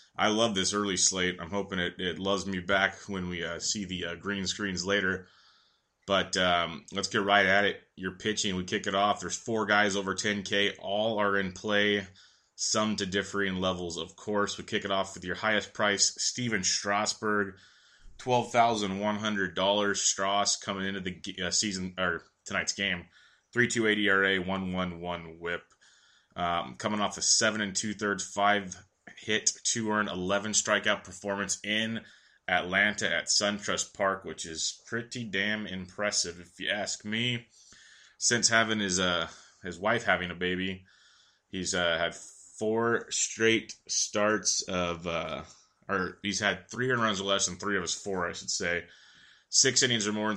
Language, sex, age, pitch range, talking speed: English, male, 20-39, 95-105 Hz, 175 wpm